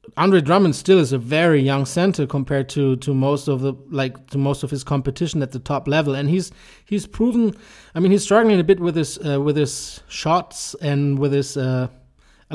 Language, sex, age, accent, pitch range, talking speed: English, male, 30-49, German, 140-165 Hz, 210 wpm